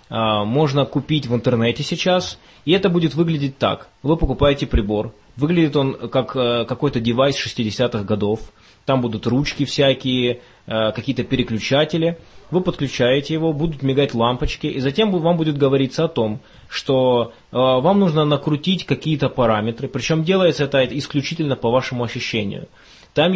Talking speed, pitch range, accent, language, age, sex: 135 wpm, 120-150 Hz, native, Russian, 20-39, male